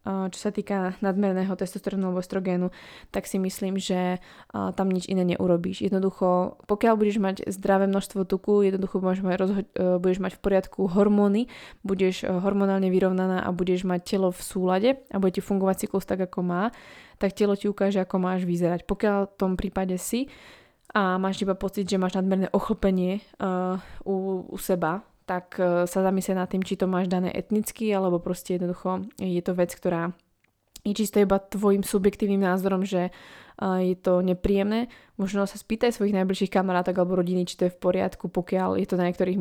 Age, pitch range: 20-39, 180-195 Hz